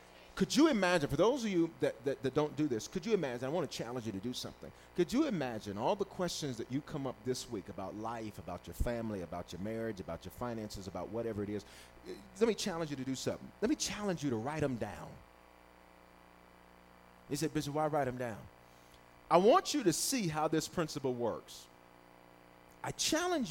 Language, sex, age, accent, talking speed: English, male, 40-59, American, 215 wpm